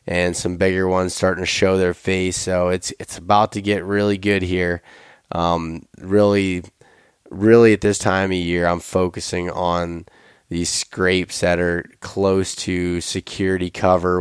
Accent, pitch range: American, 90-100 Hz